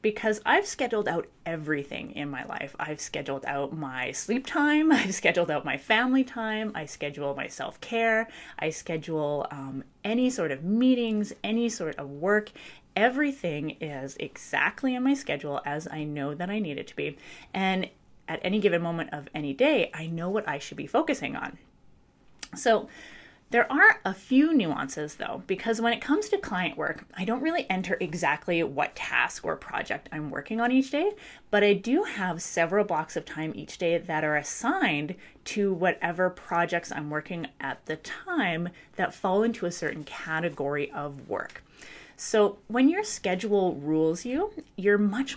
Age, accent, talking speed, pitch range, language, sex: 20-39, American, 175 wpm, 155-235 Hz, English, female